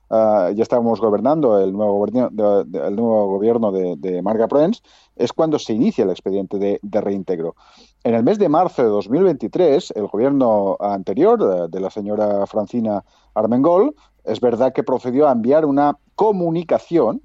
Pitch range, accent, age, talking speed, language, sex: 105-135 Hz, Spanish, 40-59, 155 wpm, Spanish, male